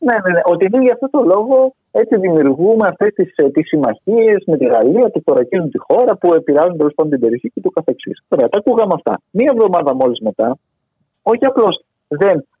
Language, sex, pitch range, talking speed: Greek, male, 150-230 Hz, 190 wpm